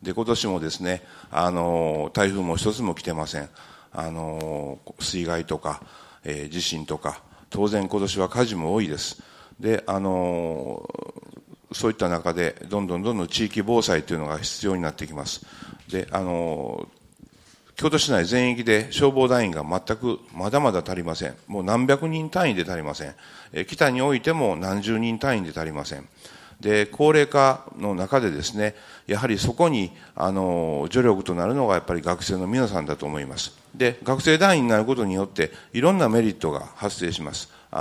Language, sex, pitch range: Japanese, male, 85-115 Hz